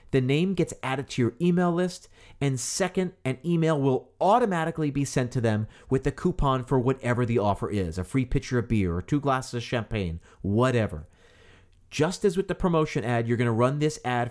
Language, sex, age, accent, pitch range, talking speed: English, male, 40-59, American, 115-155 Hz, 205 wpm